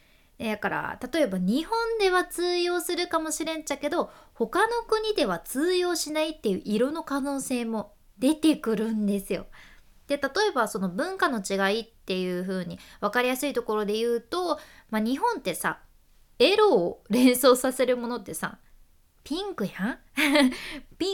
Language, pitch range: Japanese, 210-320 Hz